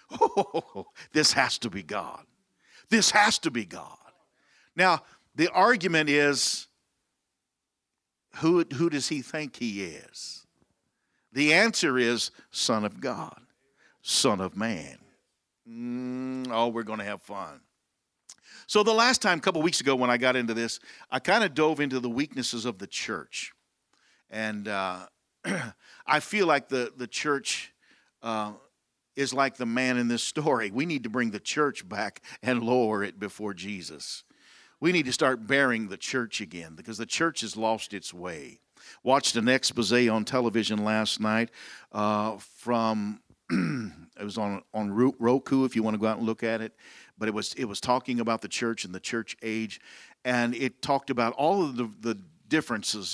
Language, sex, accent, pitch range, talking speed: English, male, American, 110-135 Hz, 170 wpm